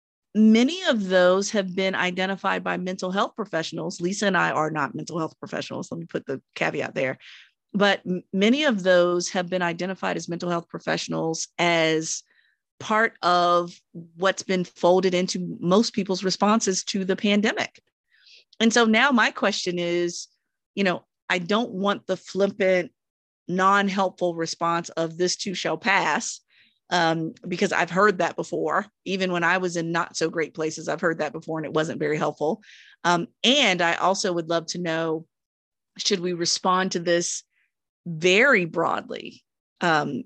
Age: 40-59